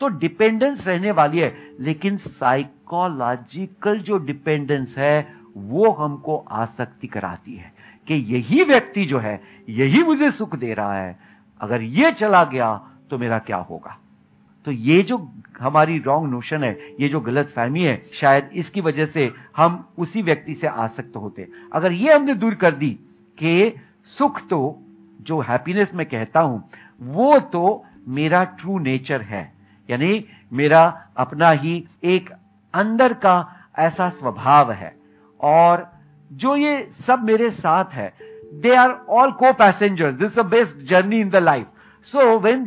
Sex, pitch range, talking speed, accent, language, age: male, 130-210 Hz, 150 wpm, native, Hindi, 50-69